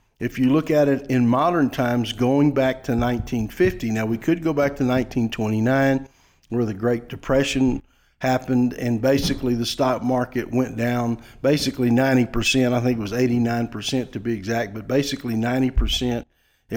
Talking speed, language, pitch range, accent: 160 wpm, English, 115-135 Hz, American